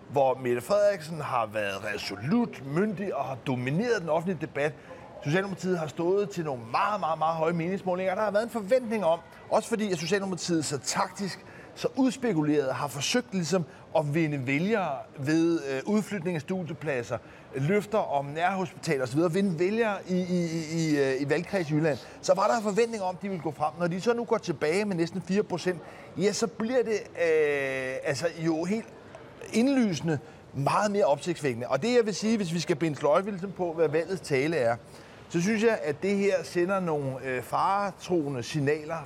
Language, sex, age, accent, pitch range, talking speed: Danish, male, 30-49, native, 150-200 Hz, 185 wpm